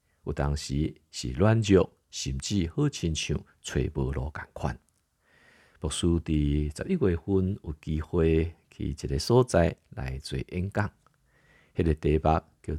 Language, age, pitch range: Chinese, 50-69, 75-105 Hz